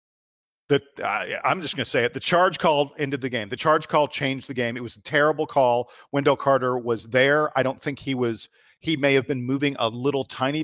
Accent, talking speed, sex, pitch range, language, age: American, 245 wpm, male, 120-145 Hz, English, 40-59